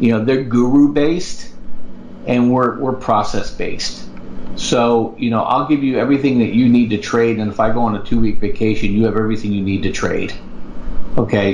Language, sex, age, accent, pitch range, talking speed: English, male, 50-69, American, 105-120 Hz, 205 wpm